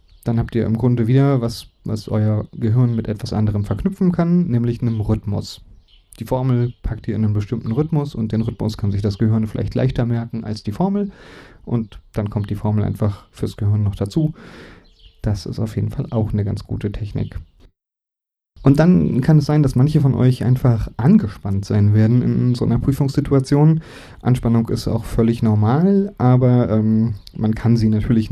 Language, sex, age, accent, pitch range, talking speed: German, male, 30-49, German, 105-125 Hz, 185 wpm